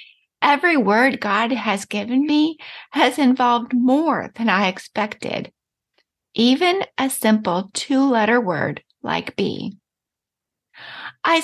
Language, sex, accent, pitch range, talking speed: English, female, American, 225-285 Hz, 105 wpm